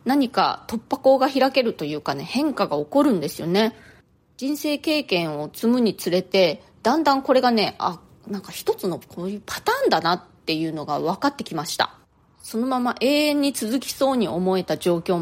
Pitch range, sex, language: 185-280 Hz, female, Japanese